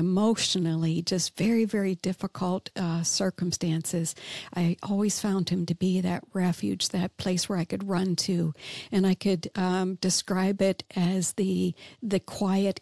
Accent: American